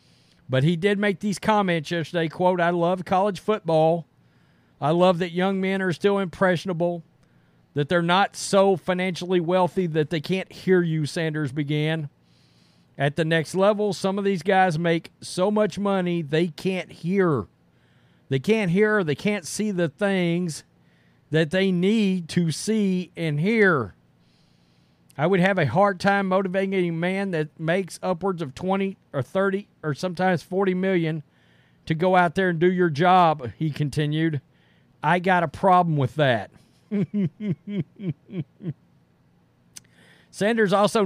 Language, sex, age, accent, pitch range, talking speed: English, male, 40-59, American, 160-195 Hz, 150 wpm